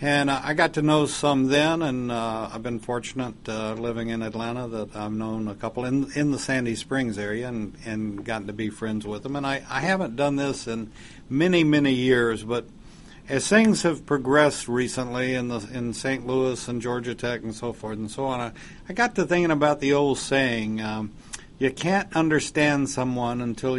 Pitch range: 115-140 Hz